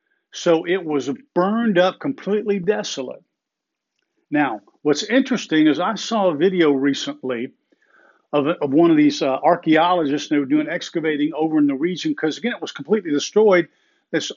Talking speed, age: 160 wpm, 50-69